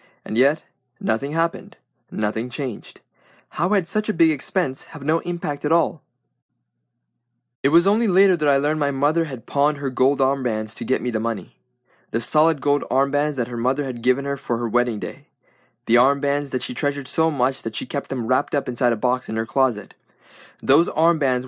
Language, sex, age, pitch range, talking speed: English, male, 20-39, 120-150 Hz, 200 wpm